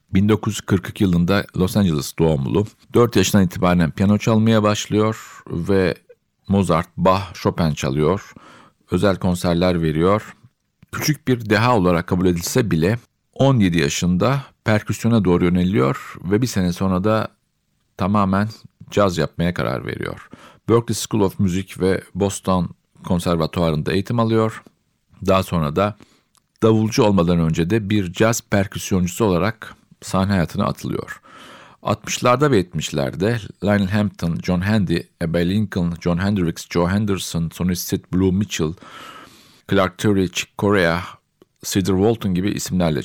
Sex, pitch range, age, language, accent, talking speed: male, 85-110 Hz, 50-69, Turkish, native, 125 wpm